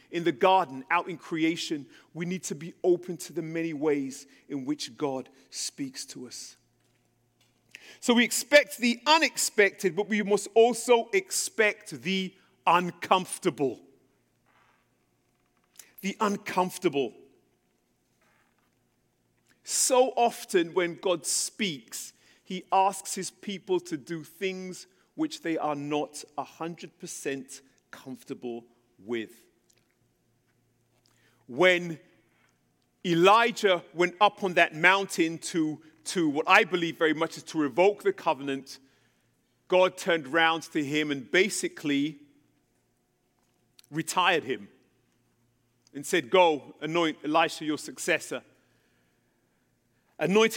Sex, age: male, 40-59